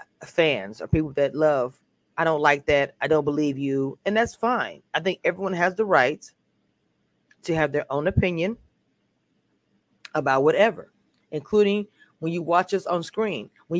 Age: 30-49